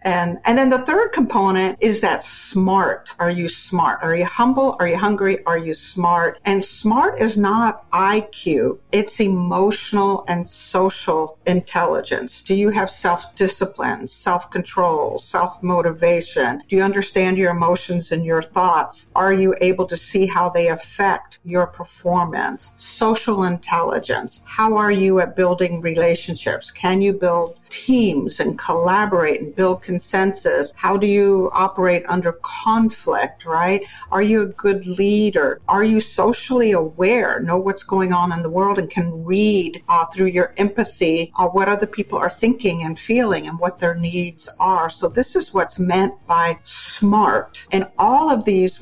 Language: English